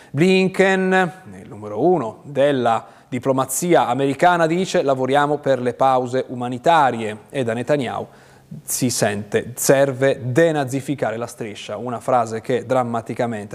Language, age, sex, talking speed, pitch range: Italian, 30-49, male, 115 wpm, 120-160 Hz